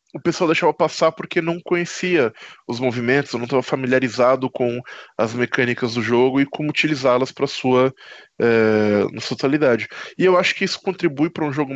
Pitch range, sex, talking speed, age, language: 125-165 Hz, male, 170 wpm, 20-39, Portuguese